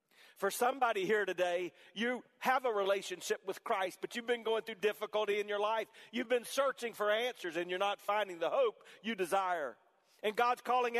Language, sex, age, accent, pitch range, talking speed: English, male, 40-59, American, 205-260 Hz, 190 wpm